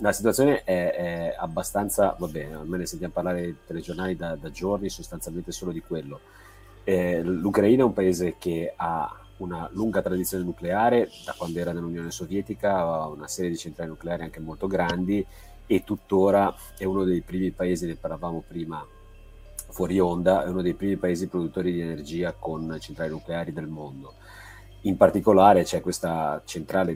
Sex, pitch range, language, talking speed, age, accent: male, 80-95 Hz, Italian, 165 wpm, 40-59, native